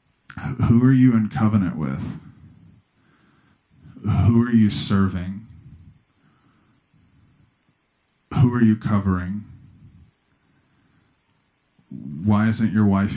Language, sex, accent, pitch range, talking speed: English, male, American, 95-110 Hz, 80 wpm